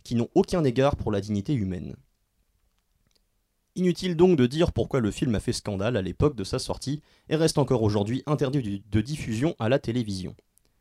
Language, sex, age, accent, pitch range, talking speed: French, male, 30-49, French, 105-150 Hz, 185 wpm